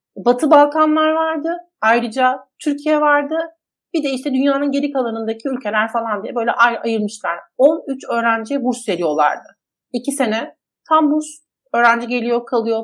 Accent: native